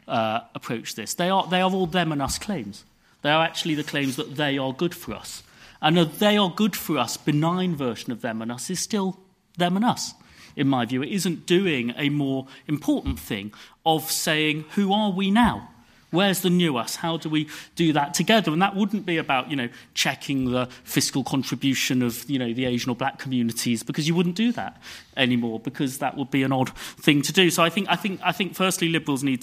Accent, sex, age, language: British, male, 40-59, English